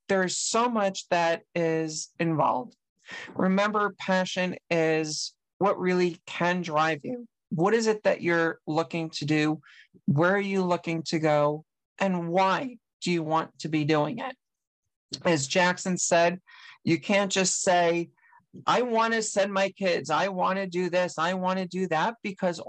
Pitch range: 160-190 Hz